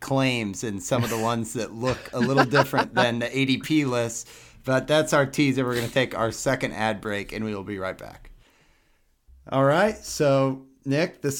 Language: English